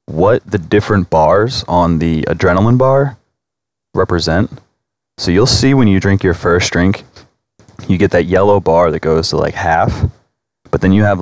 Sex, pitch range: male, 85-105 Hz